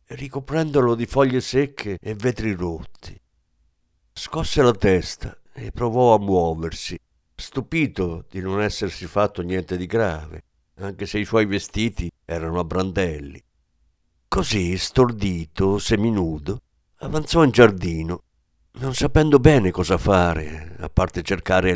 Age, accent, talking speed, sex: 50-69, native, 120 wpm, male